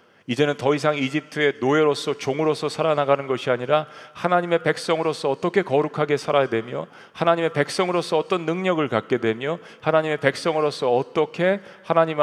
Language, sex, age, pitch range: Korean, male, 40-59, 130-165 Hz